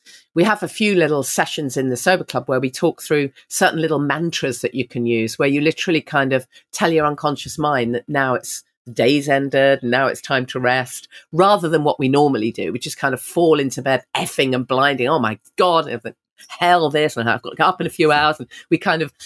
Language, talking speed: English, 245 wpm